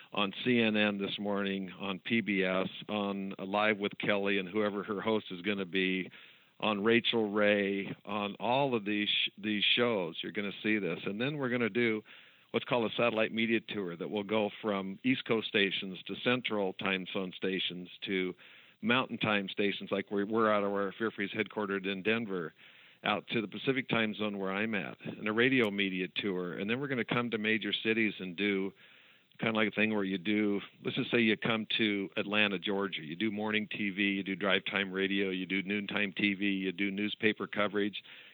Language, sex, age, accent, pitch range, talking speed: English, male, 50-69, American, 100-115 Hz, 200 wpm